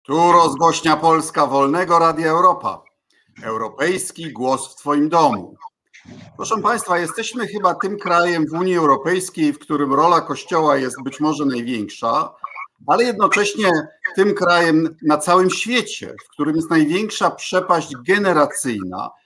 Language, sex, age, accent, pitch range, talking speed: Polish, male, 50-69, native, 150-195 Hz, 130 wpm